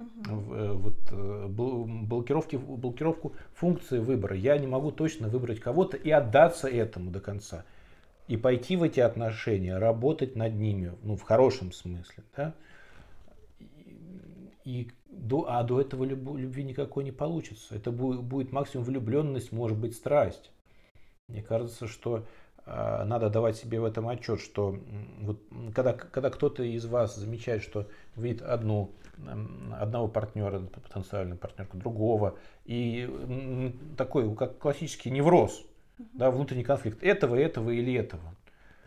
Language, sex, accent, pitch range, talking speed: Russian, male, native, 105-140 Hz, 130 wpm